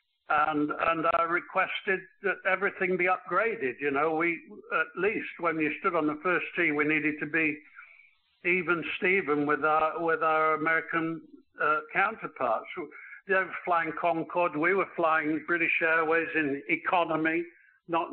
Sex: male